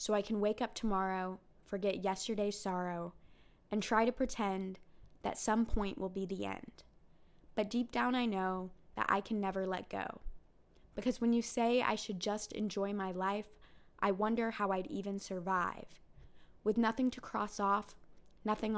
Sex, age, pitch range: female, 20-39, 185-220 Hz